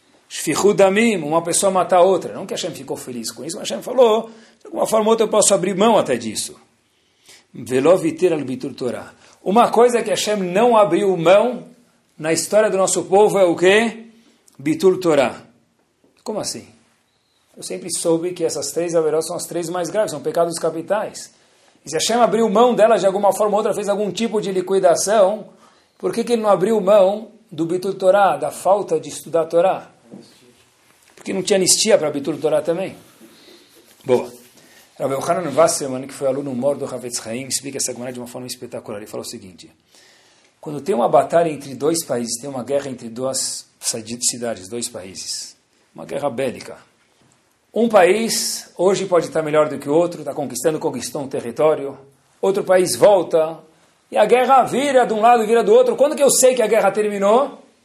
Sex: male